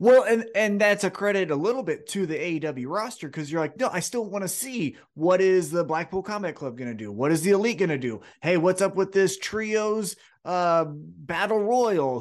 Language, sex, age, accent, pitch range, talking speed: English, male, 30-49, American, 140-210 Hz, 230 wpm